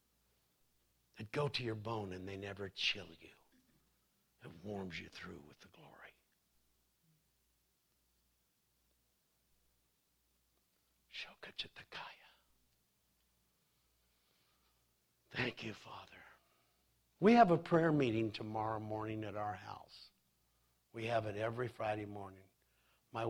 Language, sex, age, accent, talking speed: English, male, 60-79, American, 100 wpm